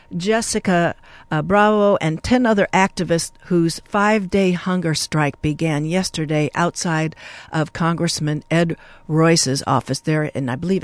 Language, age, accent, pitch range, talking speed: English, 50-69, American, 160-205 Hz, 125 wpm